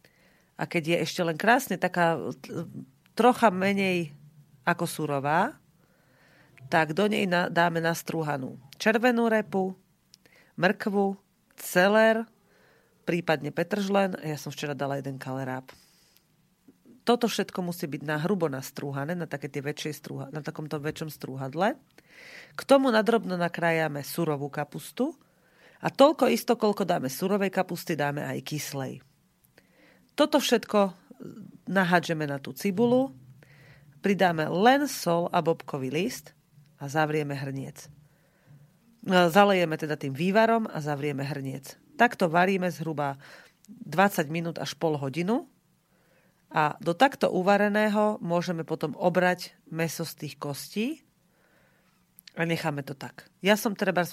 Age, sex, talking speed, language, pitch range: 40-59, female, 120 wpm, Slovak, 150-200 Hz